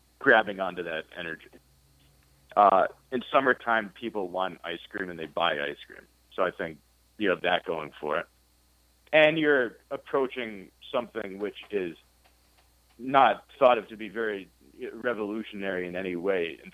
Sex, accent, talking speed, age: male, American, 150 wpm, 30-49